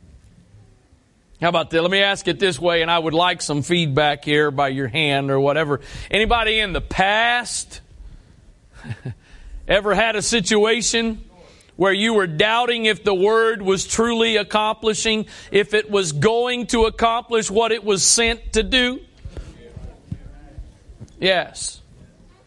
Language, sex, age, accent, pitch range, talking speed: English, male, 40-59, American, 200-250 Hz, 140 wpm